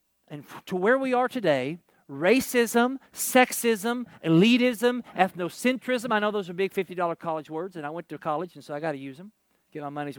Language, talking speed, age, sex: English, 195 wpm, 50-69, male